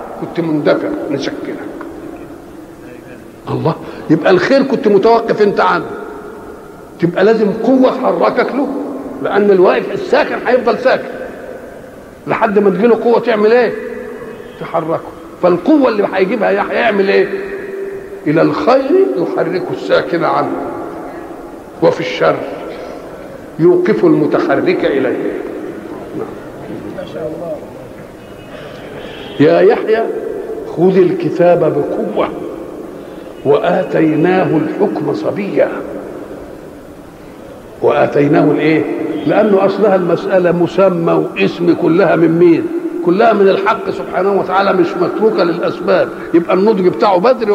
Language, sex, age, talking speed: Arabic, male, 50-69, 90 wpm